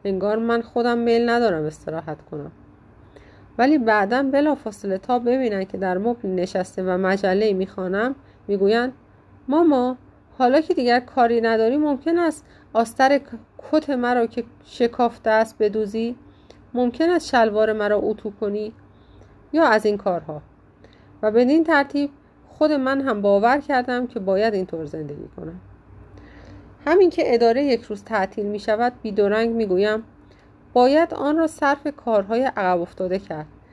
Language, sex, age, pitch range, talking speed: Persian, female, 30-49, 185-250 Hz, 135 wpm